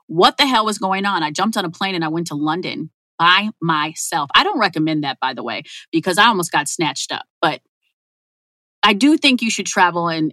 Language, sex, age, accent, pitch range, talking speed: English, female, 30-49, American, 170-275 Hz, 225 wpm